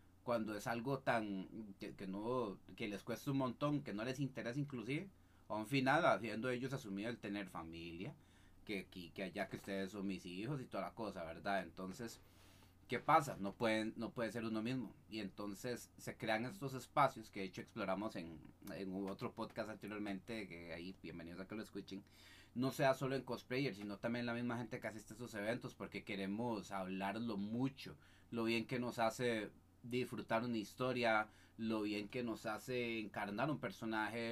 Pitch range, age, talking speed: 100-125 Hz, 30-49, 190 wpm